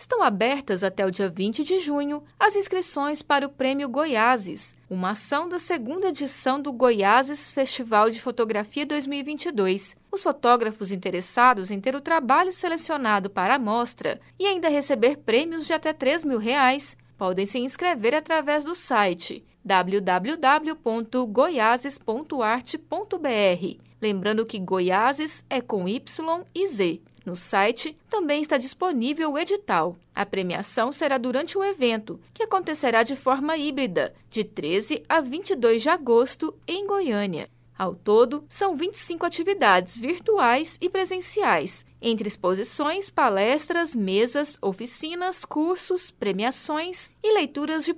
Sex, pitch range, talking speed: female, 220-325 Hz, 130 wpm